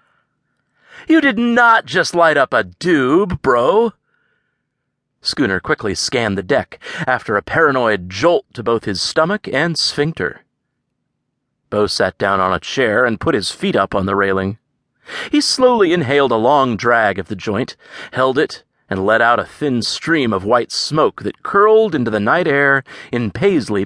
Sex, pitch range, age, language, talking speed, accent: male, 105-155 Hz, 40-59, English, 165 wpm, American